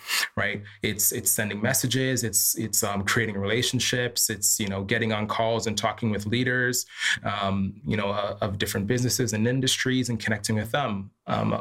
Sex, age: male, 20-39